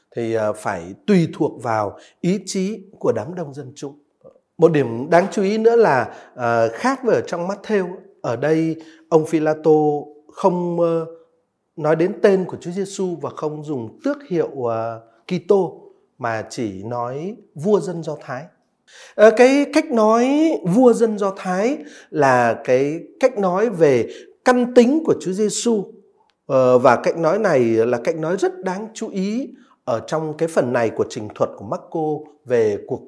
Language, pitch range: Vietnamese, 150-220 Hz